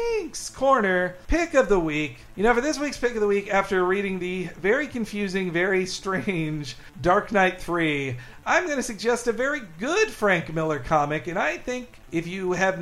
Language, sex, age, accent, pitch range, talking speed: English, male, 50-69, American, 160-215 Hz, 185 wpm